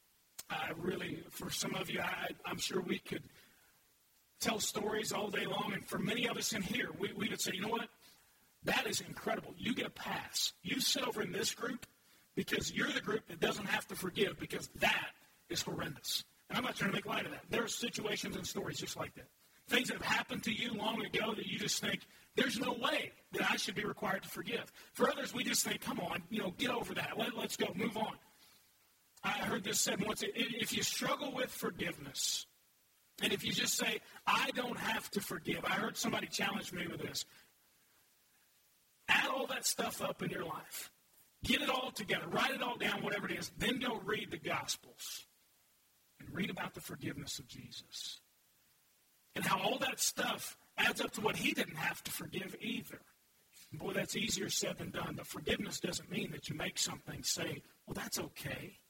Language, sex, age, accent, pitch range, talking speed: English, male, 40-59, American, 190-230 Hz, 205 wpm